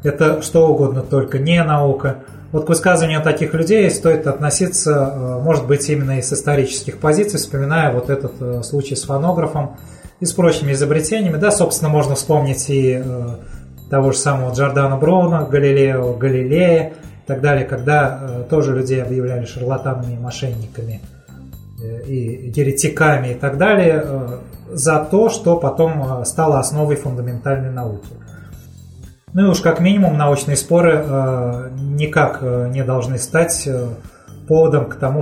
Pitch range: 130-155 Hz